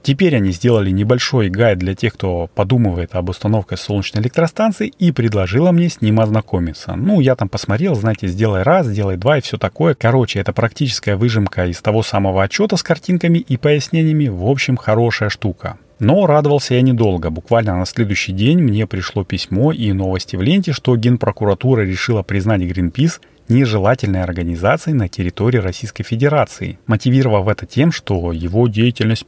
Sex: male